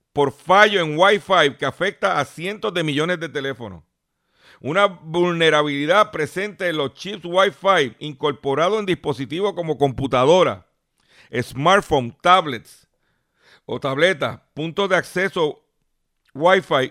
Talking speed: 115 wpm